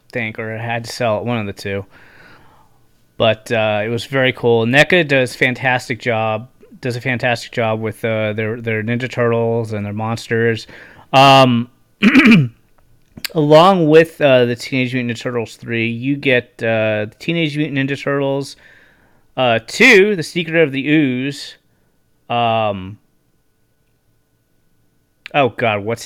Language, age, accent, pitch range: English, 30-49, American, 110-140 Hz